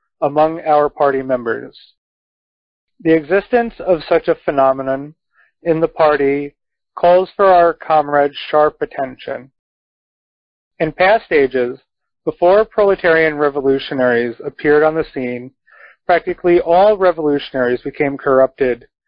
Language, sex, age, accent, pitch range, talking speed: English, male, 40-59, American, 135-155 Hz, 105 wpm